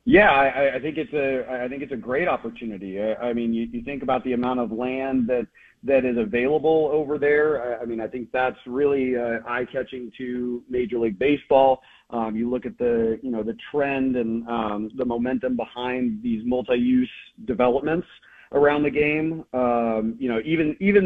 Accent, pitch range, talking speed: American, 120-140 Hz, 195 wpm